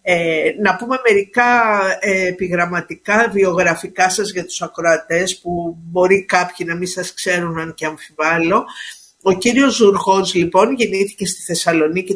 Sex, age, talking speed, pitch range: female, 50-69, 130 wpm, 165-210 Hz